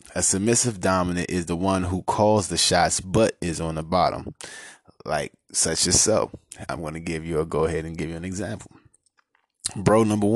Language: English